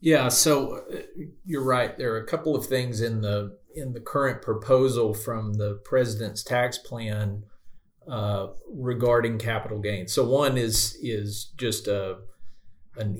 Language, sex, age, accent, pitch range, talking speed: English, male, 40-59, American, 105-120 Hz, 145 wpm